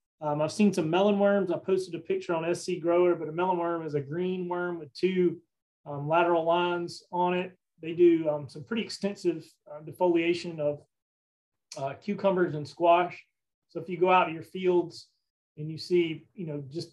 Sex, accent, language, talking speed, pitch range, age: male, American, English, 195 wpm, 150-180 Hz, 30-49